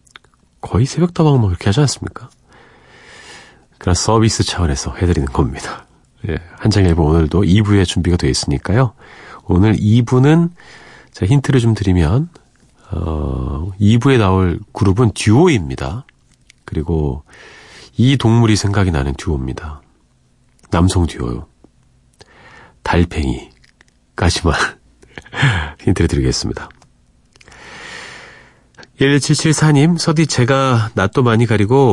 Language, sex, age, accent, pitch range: Korean, male, 40-59, native, 80-120 Hz